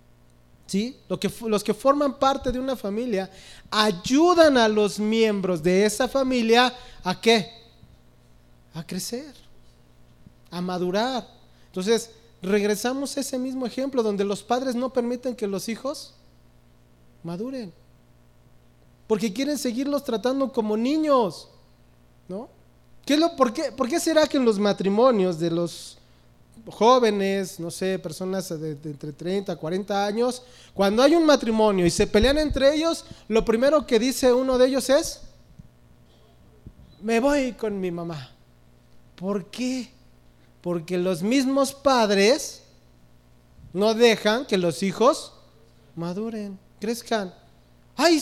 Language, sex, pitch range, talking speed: English, male, 165-255 Hz, 125 wpm